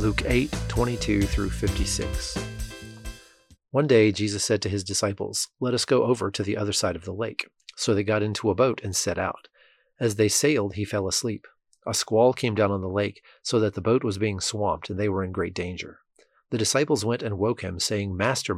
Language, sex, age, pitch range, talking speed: English, male, 40-59, 95-115 Hz, 210 wpm